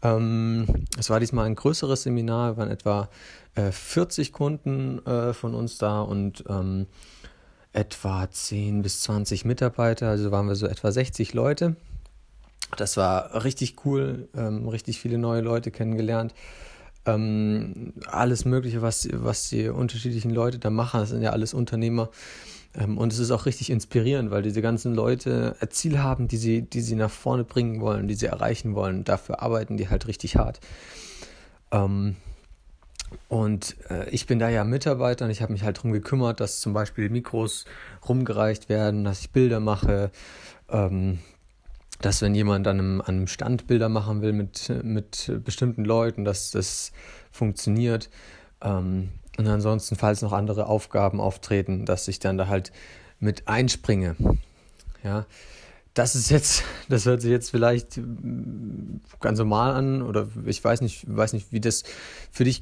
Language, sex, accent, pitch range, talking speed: German, male, German, 100-120 Hz, 160 wpm